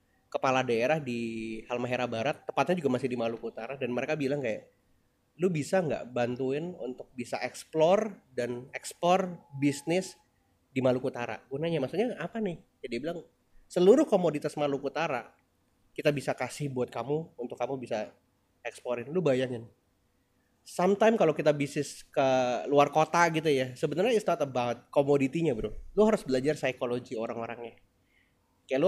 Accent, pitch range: native, 120-155 Hz